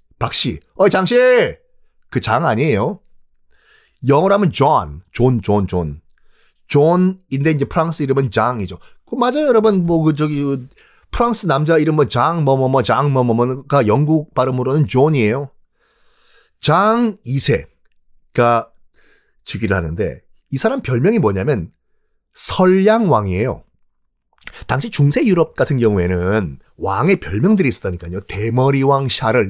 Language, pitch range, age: Korean, 115-190 Hz, 30-49